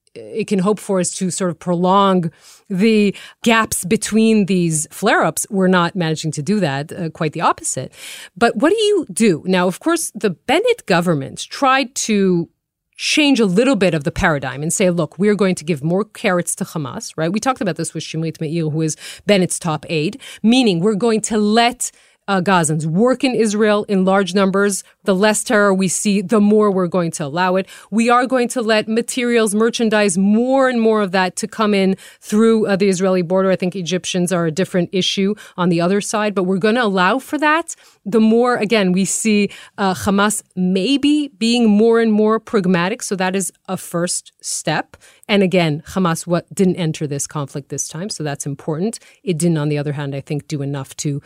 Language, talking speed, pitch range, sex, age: English, 205 wpm, 175-225 Hz, female, 30-49